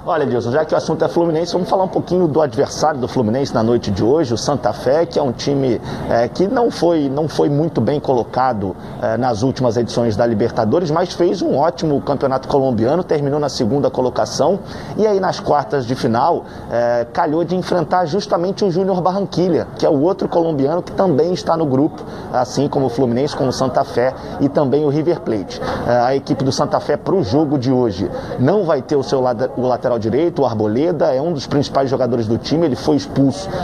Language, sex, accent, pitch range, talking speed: Portuguese, male, Brazilian, 130-170 Hz, 205 wpm